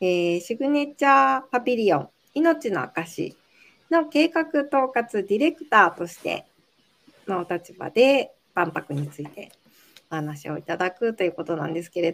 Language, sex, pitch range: Japanese, female, 175-250 Hz